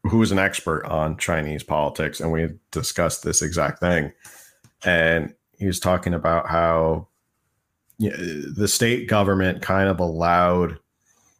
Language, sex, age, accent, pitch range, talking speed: English, male, 30-49, American, 85-100 Hz, 130 wpm